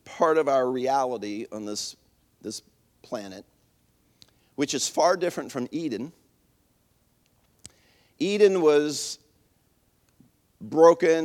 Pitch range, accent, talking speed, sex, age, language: 130-195 Hz, American, 90 wpm, male, 50-69, English